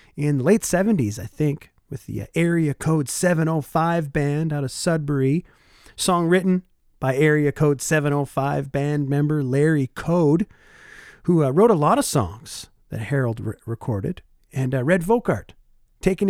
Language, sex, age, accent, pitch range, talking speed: English, male, 40-59, American, 130-180 Hz, 155 wpm